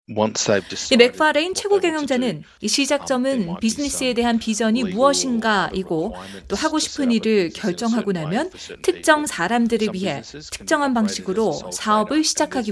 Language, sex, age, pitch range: Korean, female, 30-49, 200-280 Hz